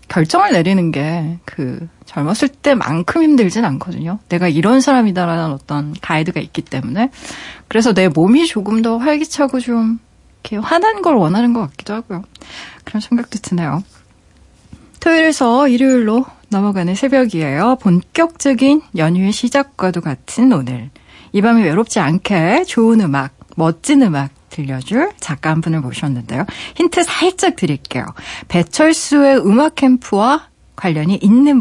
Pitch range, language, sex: 165-265 Hz, Korean, female